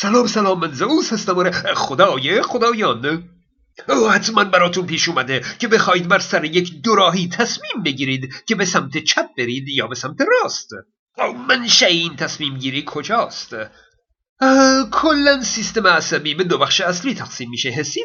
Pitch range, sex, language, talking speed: 150-220 Hz, male, Persian, 150 wpm